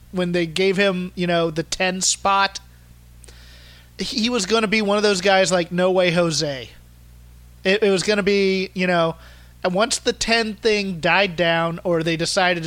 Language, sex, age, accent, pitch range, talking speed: English, male, 30-49, American, 155-205 Hz, 190 wpm